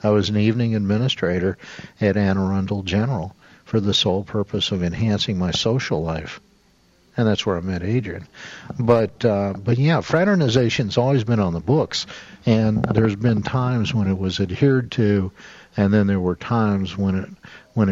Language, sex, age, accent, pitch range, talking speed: English, male, 60-79, American, 95-120 Hz, 175 wpm